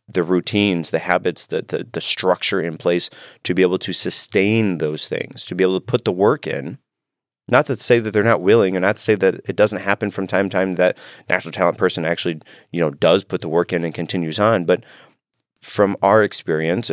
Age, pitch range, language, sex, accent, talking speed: 30-49, 85-100 Hz, English, male, American, 225 wpm